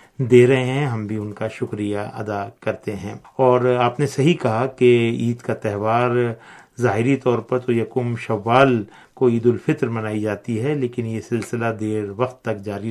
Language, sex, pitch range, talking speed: Urdu, male, 110-125 Hz, 180 wpm